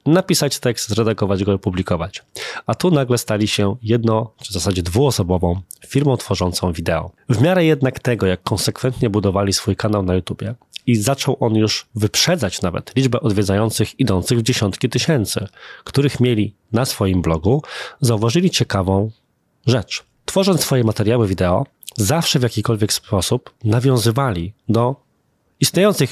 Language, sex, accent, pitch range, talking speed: Polish, male, native, 100-130 Hz, 140 wpm